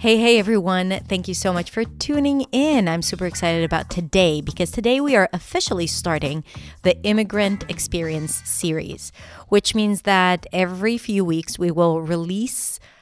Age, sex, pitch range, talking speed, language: 30-49, female, 155-210 Hz, 155 wpm, English